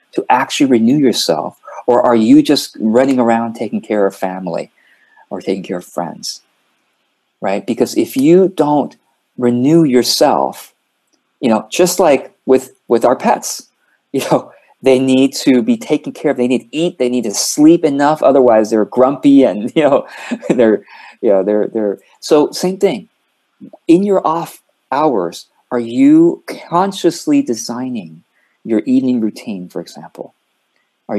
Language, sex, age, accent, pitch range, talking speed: English, male, 40-59, American, 105-155 Hz, 155 wpm